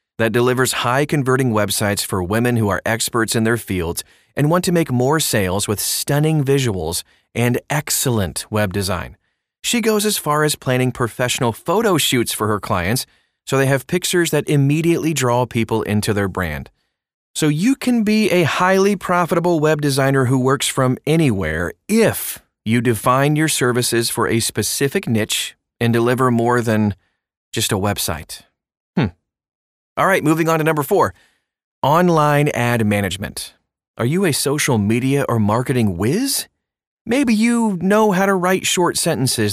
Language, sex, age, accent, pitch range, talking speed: English, male, 30-49, American, 110-155 Hz, 155 wpm